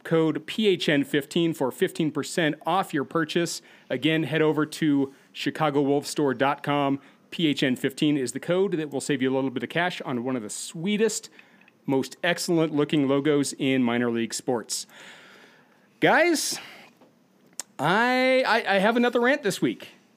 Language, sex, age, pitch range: English, male, 30-49, 135-180 Hz